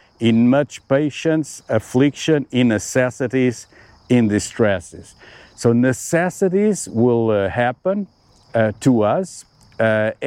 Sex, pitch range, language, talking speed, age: male, 115-145 Hz, English, 100 wpm, 50-69